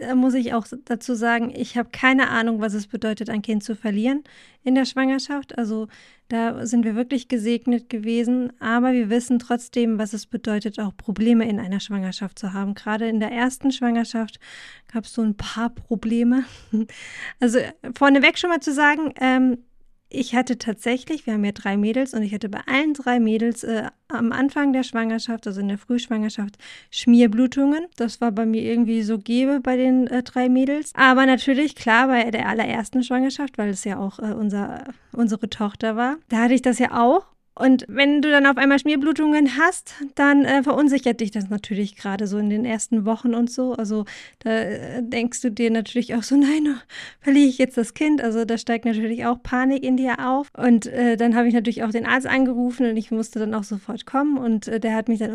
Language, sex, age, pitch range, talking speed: German, female, 20-39, 225-260 Hz, 200 wpm